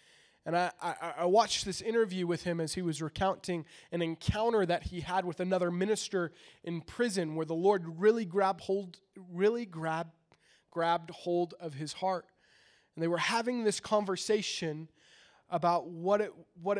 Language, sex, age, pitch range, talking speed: English, male, 20-39, 165-200 Hz, 165 wpm